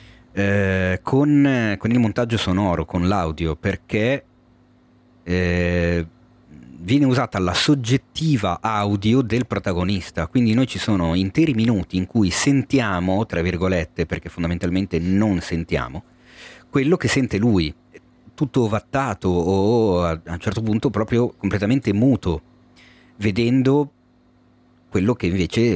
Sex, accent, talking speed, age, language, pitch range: male, native, 115 wpm, 40-59, Italian, 90-120 Hz